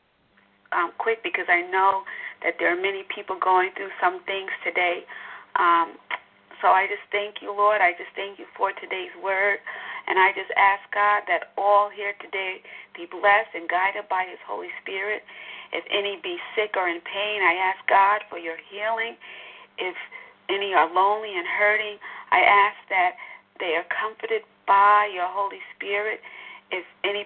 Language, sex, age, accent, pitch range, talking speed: English, female, 40-59, American, 195-225 Hz, 165 wpm